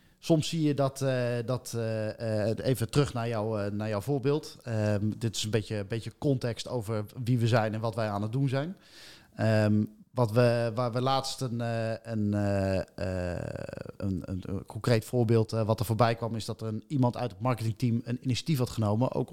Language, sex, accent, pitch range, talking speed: Dutch, male, Dutch, 110-125 Hz, 190 wpm